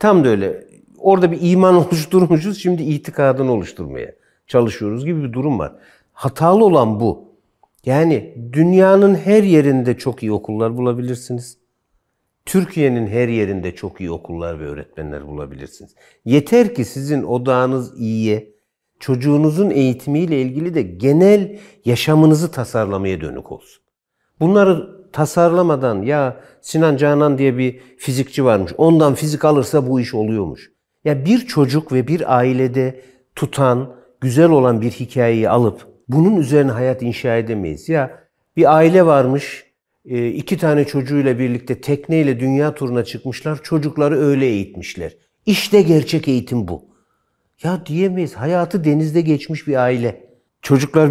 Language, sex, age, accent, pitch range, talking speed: Turkish, male, 50-69, native, 120-160 Hz, 125 wpm